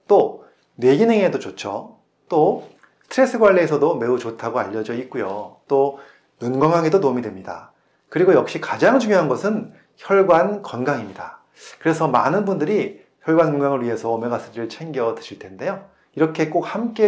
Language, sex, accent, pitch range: Korean, male, native, 135-195 Hz